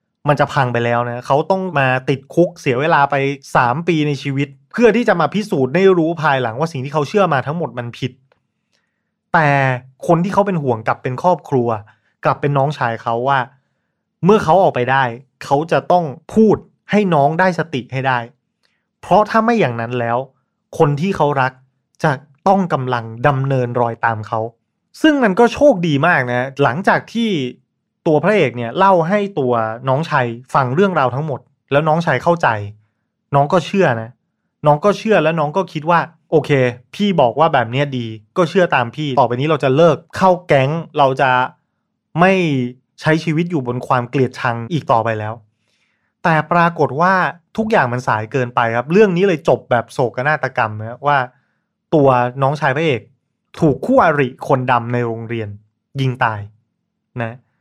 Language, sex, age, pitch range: Thai, male, 20-39, 125-170 Hz